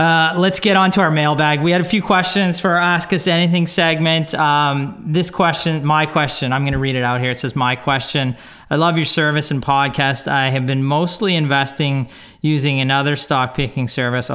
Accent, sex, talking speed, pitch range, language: American, male, 210 wpm, 125-155 Hz, English